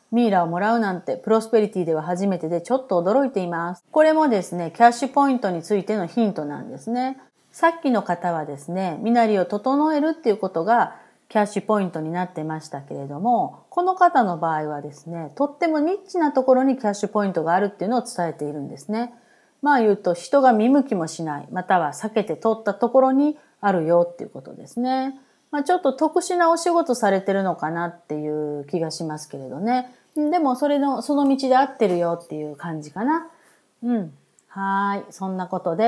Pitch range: 175-255 Hz